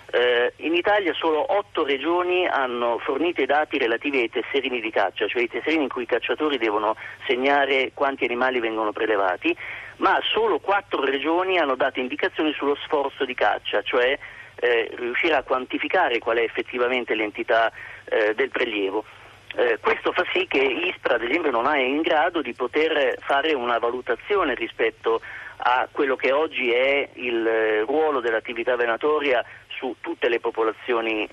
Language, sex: Italian, male